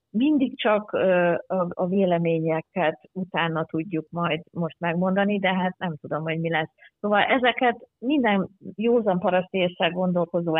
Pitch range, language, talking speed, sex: 160-200 Hz, Hungarian, 125 wpm, female